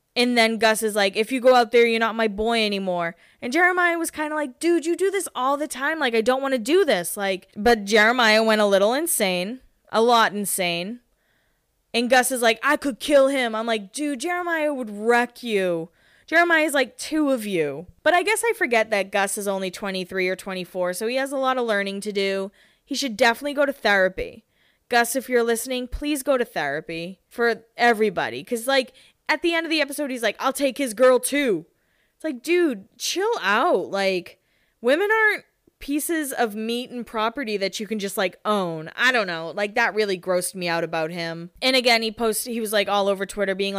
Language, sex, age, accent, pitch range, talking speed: English, female, 20-39, American, 195-265 Hz, 220 wpm